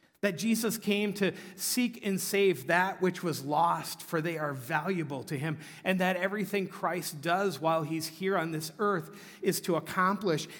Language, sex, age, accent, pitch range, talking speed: English, male, 50-69, American, 150-185 Hz, 175 wpm